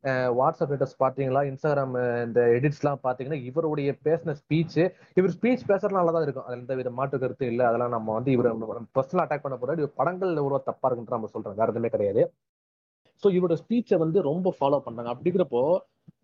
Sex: male